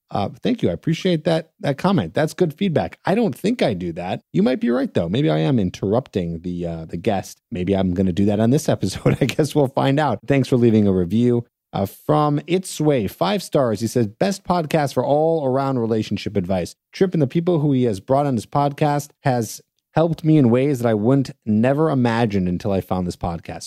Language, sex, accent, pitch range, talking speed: English, male, American, 95-145 Hz, 230 wpm